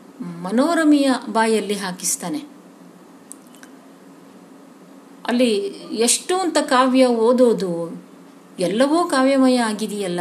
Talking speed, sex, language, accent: 65 wpm, female, Kannada, native